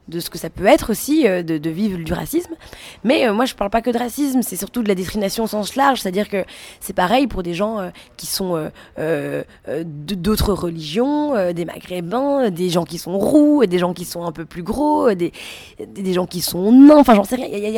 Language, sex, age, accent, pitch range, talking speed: French, female, 20-39, French, 170-225 Hz, 245 wpm